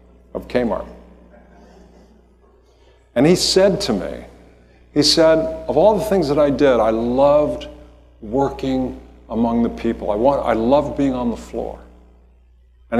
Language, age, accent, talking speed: English, 50-69, American, 145 wpm